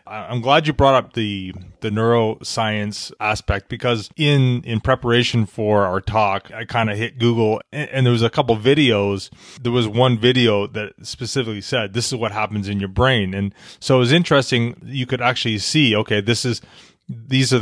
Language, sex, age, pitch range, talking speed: English, male, 30-49, 105-125 Hz, 190 wpm